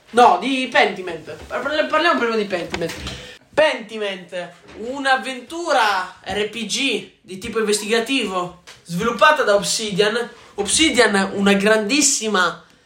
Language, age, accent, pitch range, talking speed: Italian, 20-39, native, 195-255 Hz, 95 wpm